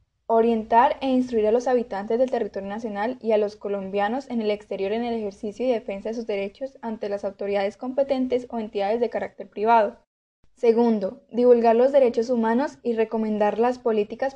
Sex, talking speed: female, 175 wpm